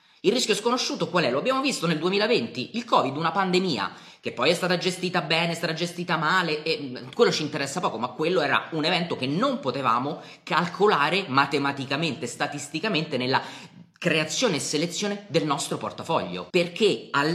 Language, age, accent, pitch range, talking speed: Italian, 30-49, native, 135-180 Hz, 170 wpm